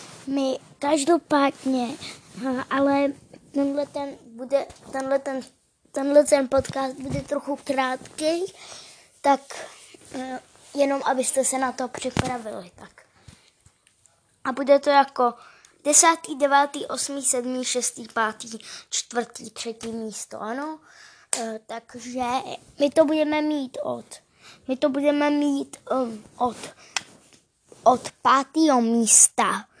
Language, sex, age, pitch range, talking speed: Czech, female, 20-39, 245-280 Hz, 100 wpm